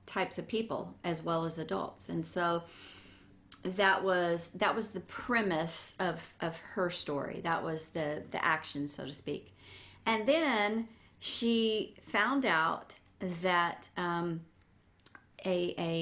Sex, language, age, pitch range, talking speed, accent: female, English, 40-59, 160-190 Hz, 135 wpm, American